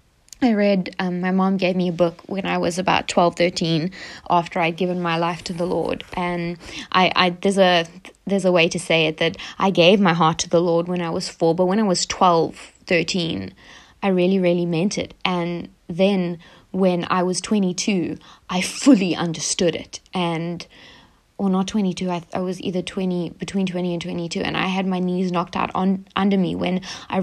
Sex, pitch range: female, 180-200 Hz